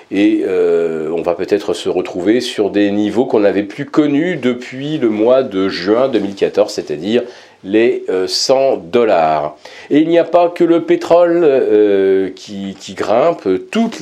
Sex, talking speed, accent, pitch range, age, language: male, 160 wpm, French, 100-160 Hz, 40-59, French